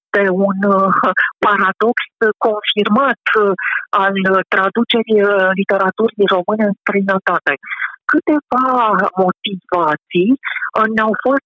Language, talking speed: Romanian, 75 wpm